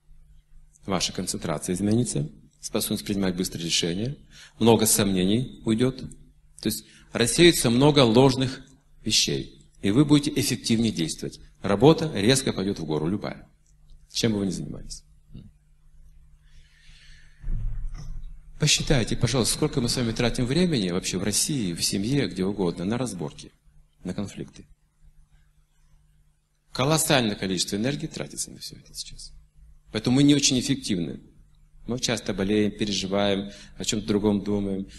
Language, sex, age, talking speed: Russian, male, 40-59, 125 wpm